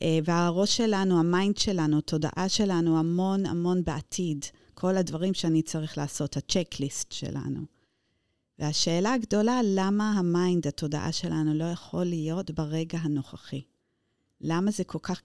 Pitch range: 155-190 Hz